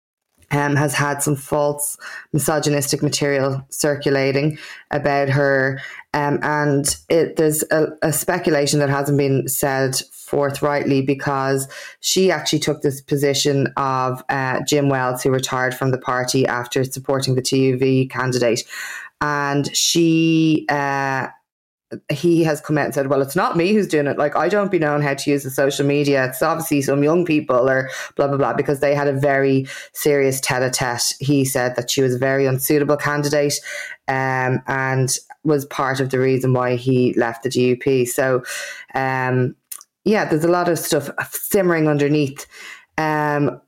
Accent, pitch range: Irish, 135-150 Hz